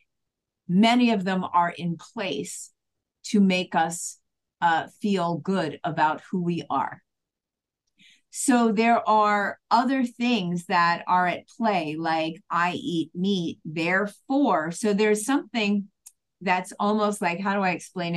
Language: English